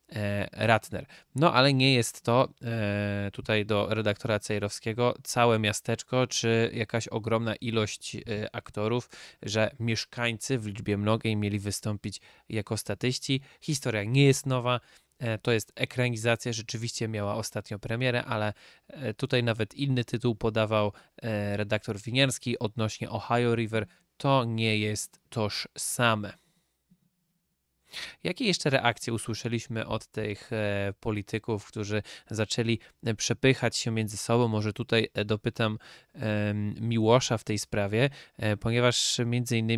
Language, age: Polish, 20-39